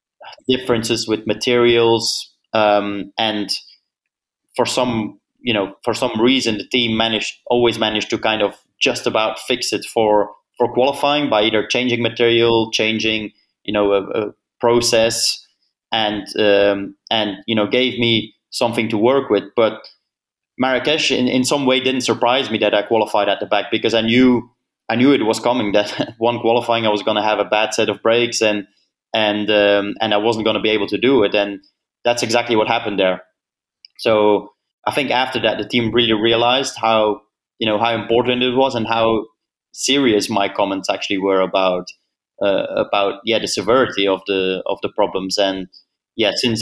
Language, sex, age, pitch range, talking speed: English, male, 20-39, 105-120 Hz, 180 wpm